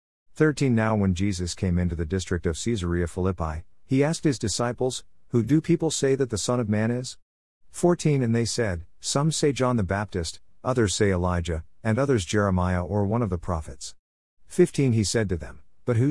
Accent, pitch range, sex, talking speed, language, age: American, 90-120 Hz, male, 195 wpm, English, 50-69